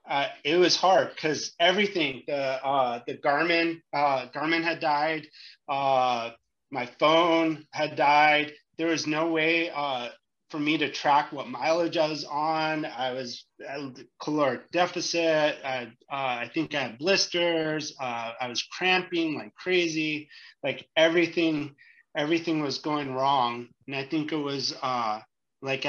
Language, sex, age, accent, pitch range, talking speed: English, male, 30-49, American, 125-155 Hz, 145 wpm